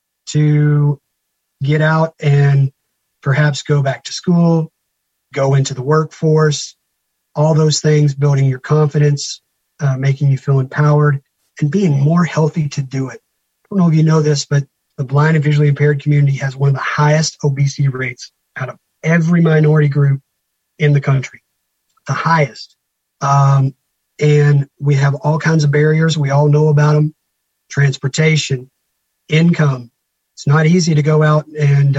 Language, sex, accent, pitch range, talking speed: English, male, American, 140-155 Hz, 160 wpm